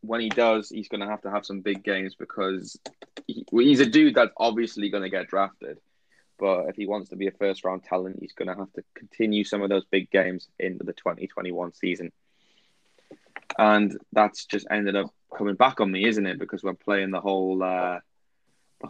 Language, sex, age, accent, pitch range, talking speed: English, male, 20-39, British, 95-115 Hz, 195 wpm